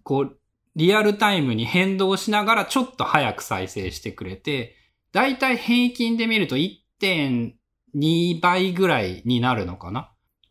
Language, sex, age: Japanese, male, 20-39